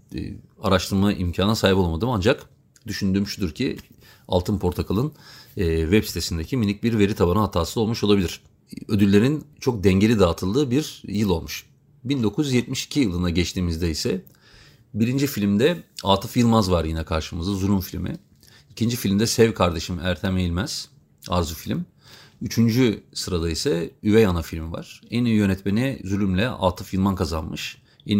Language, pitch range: Turkish, 90-115 Hz